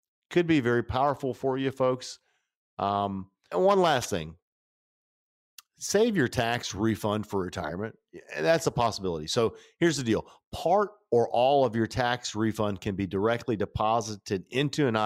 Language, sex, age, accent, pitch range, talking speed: English, male, 50-69, American, 100-130 Hz, 150 wpm